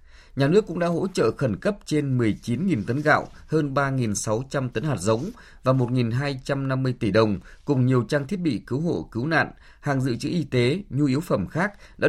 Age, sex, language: 20-39, male, Vietnamese